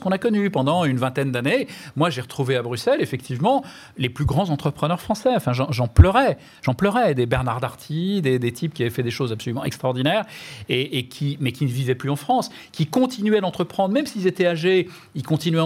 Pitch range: 135-190 Hz